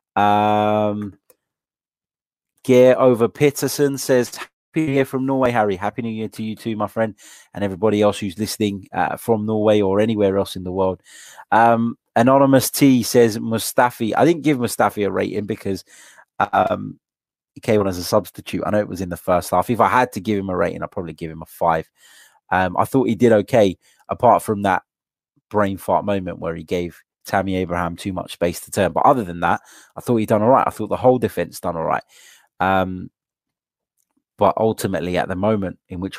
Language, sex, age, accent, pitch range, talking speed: English, male, 20-39, British, 95-125 Hz, 200 wpm